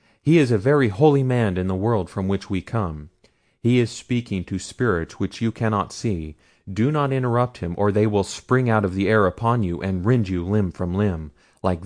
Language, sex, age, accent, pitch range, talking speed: English, male, 30-49, American, 90-115 Hz, 220 wpm